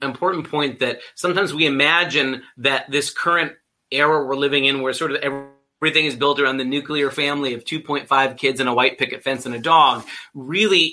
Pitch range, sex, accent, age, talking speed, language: 135-160 Hz, male, American, 30-49, 190 wpm, English